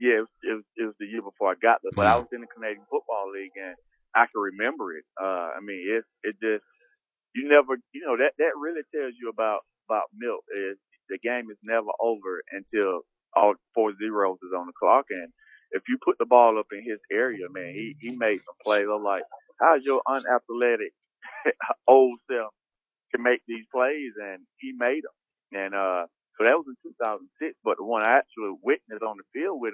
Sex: male